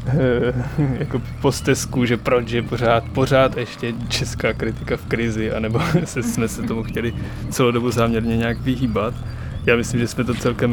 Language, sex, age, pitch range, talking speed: Czech, male, 20-39, 105-120 Hz, 160 wpm